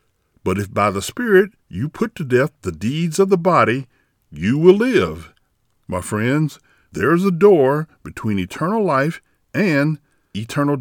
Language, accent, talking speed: English, American, 155 wpm